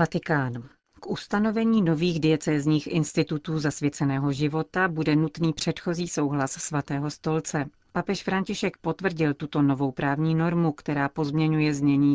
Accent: native